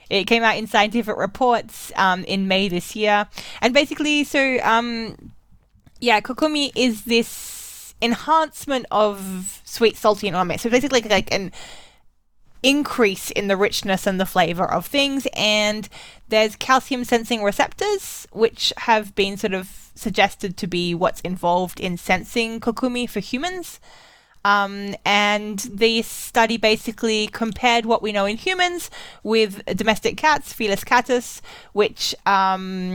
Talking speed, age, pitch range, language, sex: 140 wpm, 10-29, 195-230 Hz, English, female